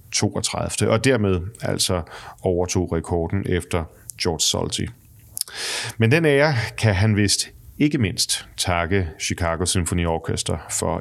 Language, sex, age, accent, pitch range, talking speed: Danish, male, 30-49, native, 90-120 Hz, 120 wpm